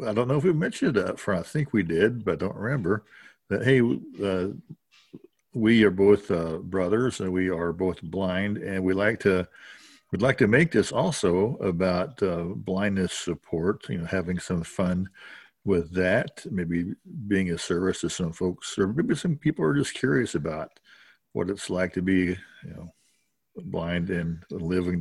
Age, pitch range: 50-69, 90-110 Hz